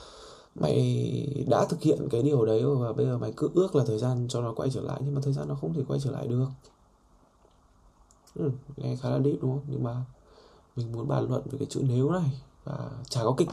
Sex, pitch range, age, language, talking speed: male, 115-145 Hz, 20-39, Vietnamese, 235 wpm